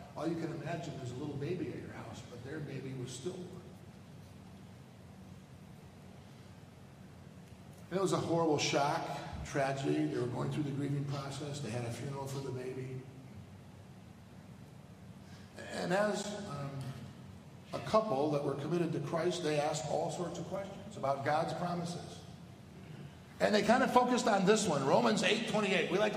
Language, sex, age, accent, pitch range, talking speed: English, male, 50-69, American, 135-200 Hz, 160 wpm